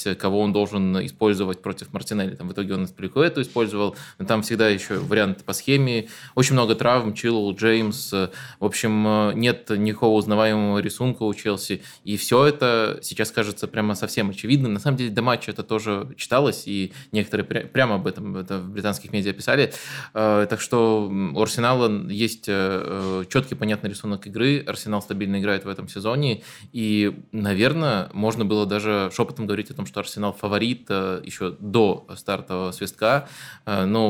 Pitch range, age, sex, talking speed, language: 100-115 Hz, 20-39, male, 160 wpm, Russian